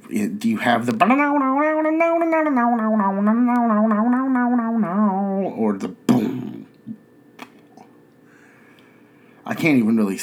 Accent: American